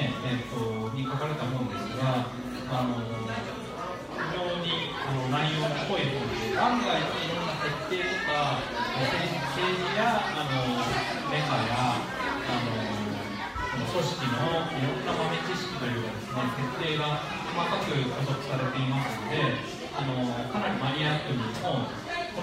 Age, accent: 40-59, native